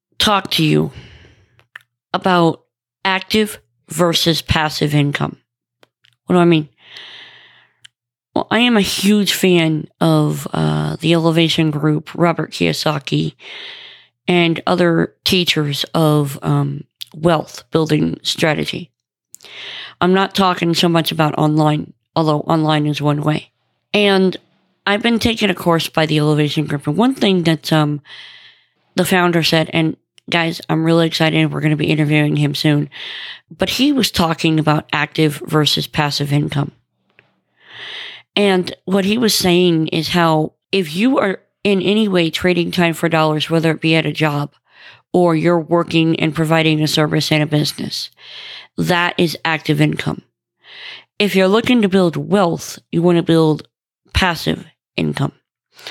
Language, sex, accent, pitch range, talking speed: English, female, American, 150-180 Hz, 145 wpm